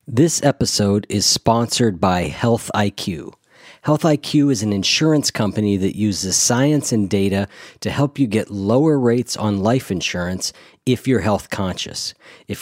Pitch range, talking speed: 95-125 Hz, 150 wpm